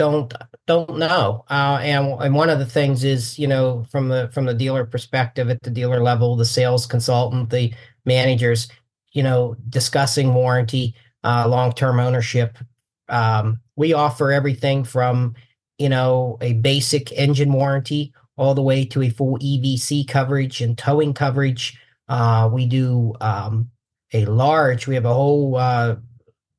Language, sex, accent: English, male, American